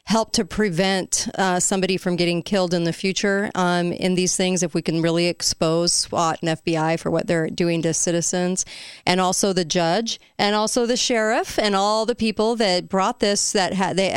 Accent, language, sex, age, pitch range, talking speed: American, English, female, 40-59, 170-205 Hz, 195 wpm